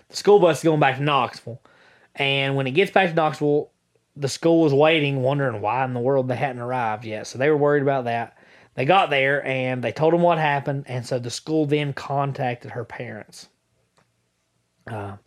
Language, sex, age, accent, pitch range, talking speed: English, male, 20-39, American, 120-145 Hz, 205 wpm